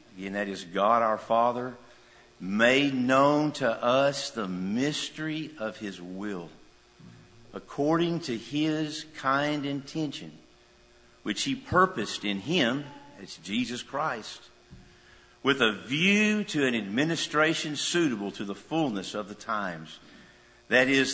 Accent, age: American, 50-69